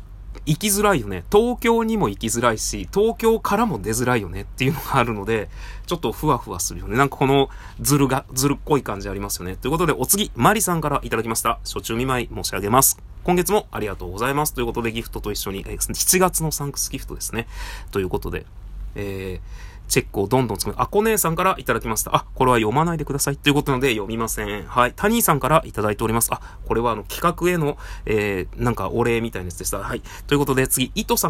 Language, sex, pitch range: Japanese, male, 100-150 Hz